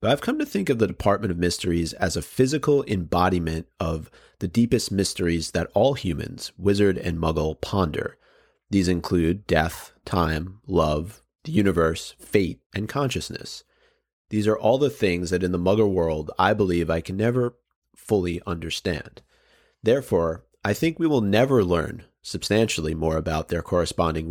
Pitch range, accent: 80-105 Hz, American